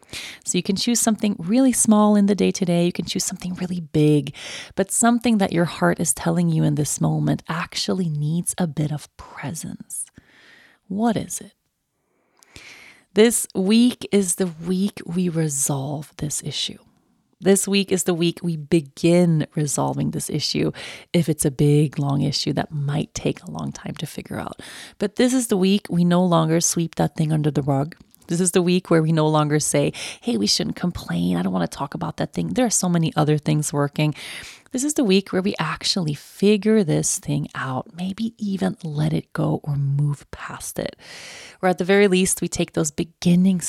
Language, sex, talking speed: English, female, 195 wpm